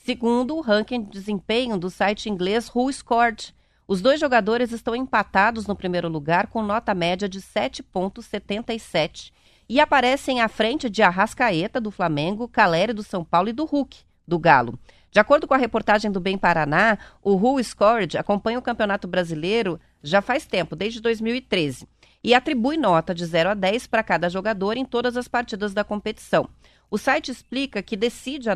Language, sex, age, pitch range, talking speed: Portuguese, female, 30-49, 190-240 Hz, 170 wpm